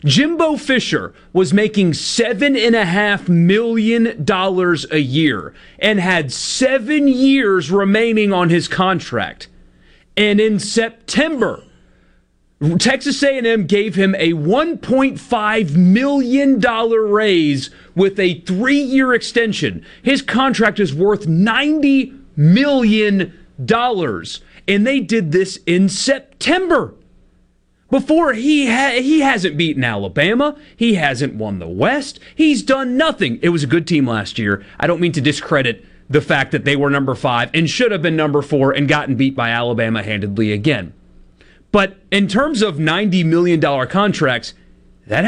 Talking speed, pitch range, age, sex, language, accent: 130 wpm, 150-235 Hz, 40-59, male, English, American